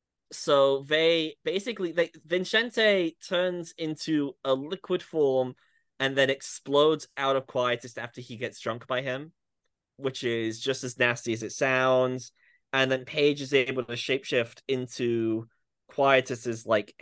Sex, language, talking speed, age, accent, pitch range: male, English, 140 wpm, 10-29, British, 115-135 Hz